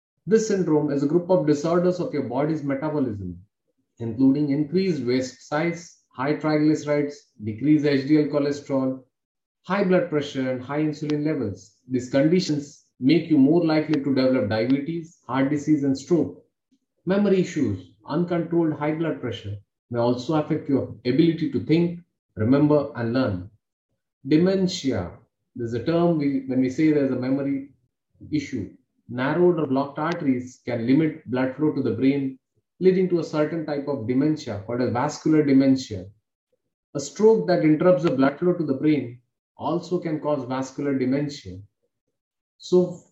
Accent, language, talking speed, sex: Indian, English, 150 wpm, male